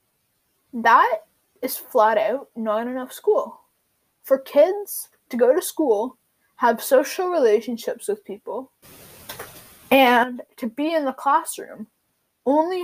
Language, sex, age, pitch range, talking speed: English, female, 10-29, 235-305 Hz, 115 wpm